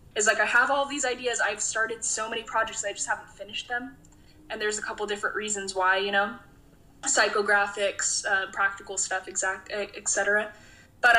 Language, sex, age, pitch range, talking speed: English, female, 10-29, 200-235 Hz, 170 wpm